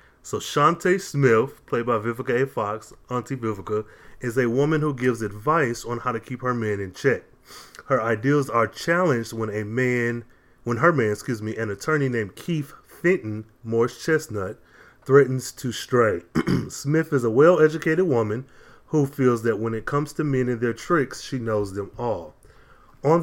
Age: 20-39